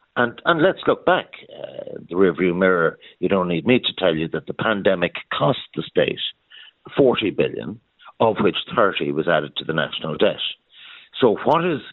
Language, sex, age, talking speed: English, male, 60-79, 180 wpm